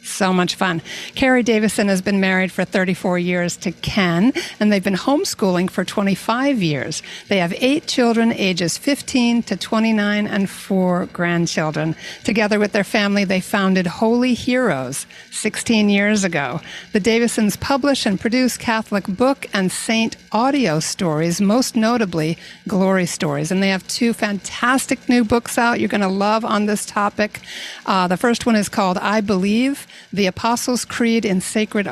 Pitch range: 185-230 Hz